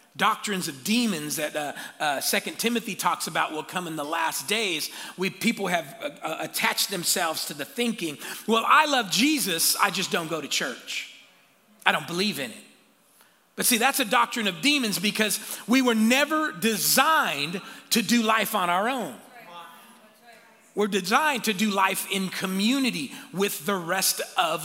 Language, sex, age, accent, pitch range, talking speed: English, male, 40-59, American, 190-250 Hz, 170 wpm